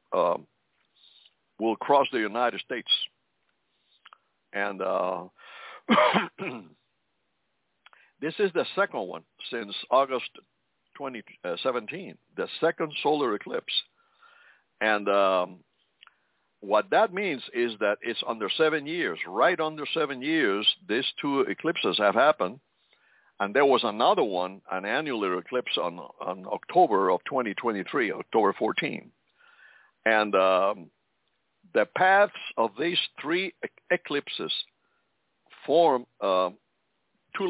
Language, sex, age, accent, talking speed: English, male, 60-79, American, 105 wpm